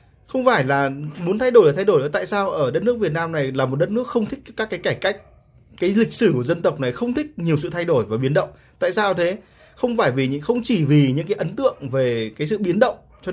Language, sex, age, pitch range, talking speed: Vietnamese, male, 20-39, 150-225 Hz, 285 wpm